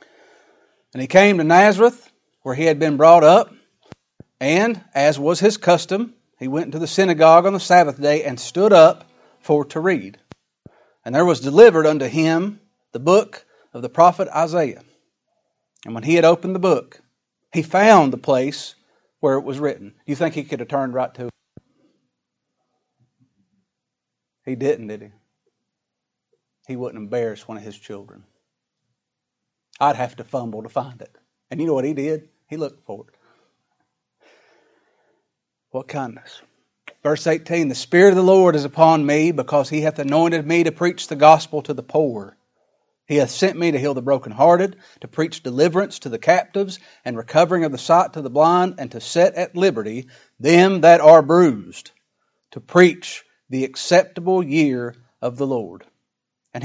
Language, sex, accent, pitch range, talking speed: English, male, American, 130-175 Hz, 170 wpm